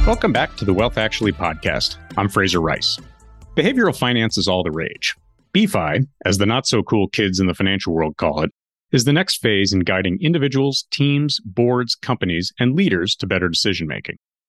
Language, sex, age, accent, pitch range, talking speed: English, male, 40-59, American, 95-130 Hz, 185 wpm